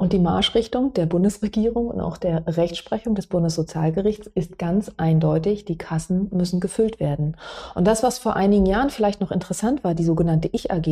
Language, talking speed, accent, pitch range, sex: German, 175 wpm, German, 160-205 Hz, female